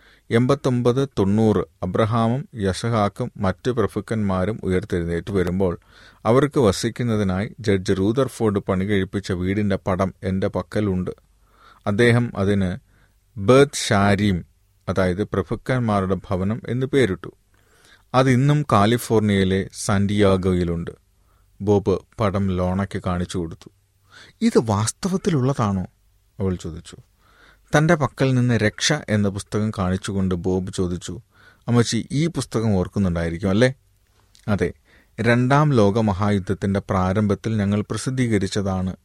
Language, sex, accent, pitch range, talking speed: Malayalam, male, native, 95-120 Hz, 90 wpm